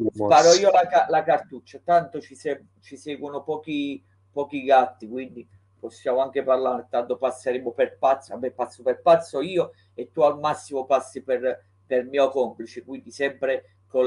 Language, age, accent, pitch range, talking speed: Italian, 30-49, native, 115-135 Hz, 155 wpm